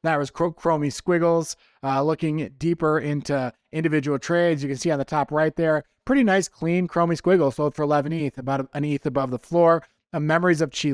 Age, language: 20-39, English